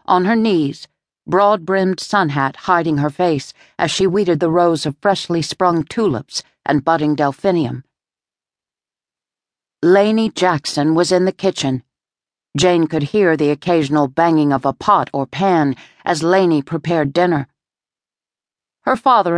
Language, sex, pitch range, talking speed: English, female, 145-185 Hz, 135 wpm